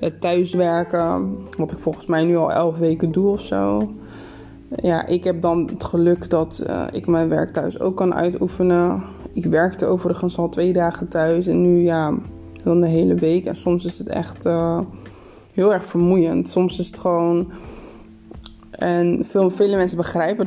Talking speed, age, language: 175 wpm, 20-39, Dutch